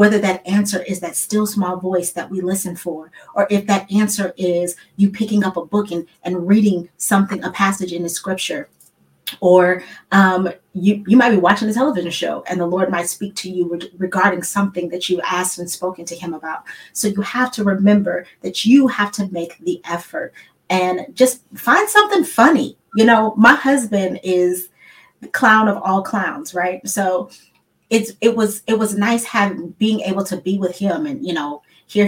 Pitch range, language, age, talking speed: 175-215 Hz, English, 30-49, 195 wpm